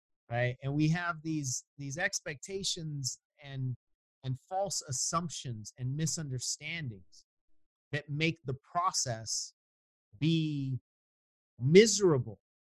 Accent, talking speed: American, 90 wpm